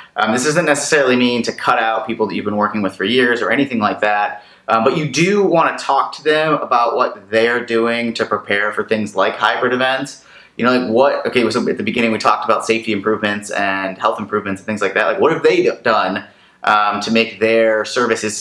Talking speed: 230 wpm